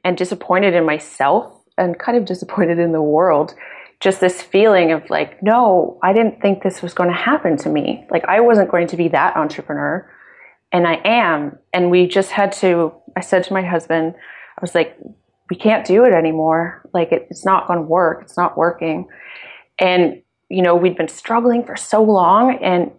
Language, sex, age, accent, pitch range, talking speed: English, female, 30-49, American, 165-200 Hz, 200 wpm